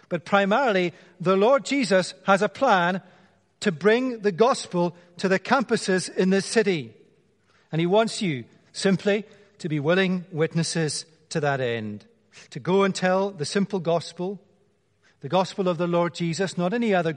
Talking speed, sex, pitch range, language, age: 160 wpm, male, 140-195 Hz, English, 40-59